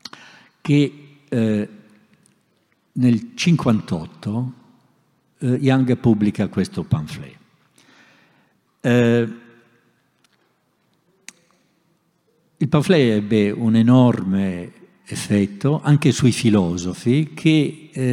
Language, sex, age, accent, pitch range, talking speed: Italian, male, 60-79, native, 110-175 Hz, 65 wpm